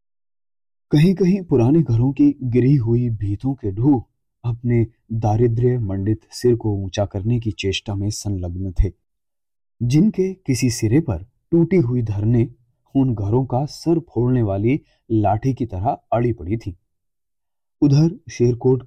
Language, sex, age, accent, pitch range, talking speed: Hindi, male, 30-49, native, 100-140 Hz, 135 wpm